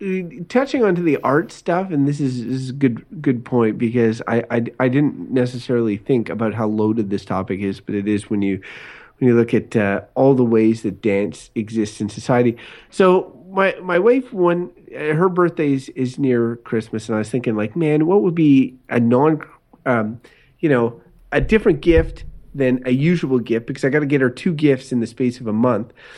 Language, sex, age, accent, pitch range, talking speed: English, male, 30-49, American, 120-165 Hz, 210 wpm